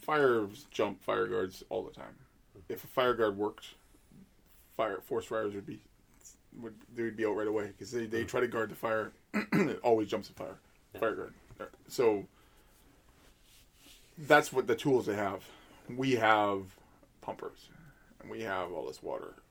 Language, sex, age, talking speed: English, male, 20-39, 170 wpm